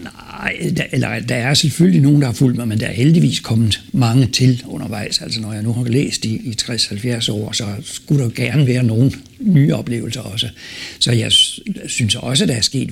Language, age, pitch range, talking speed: Danish, 60-79, 110-140 Hz, 215 wpm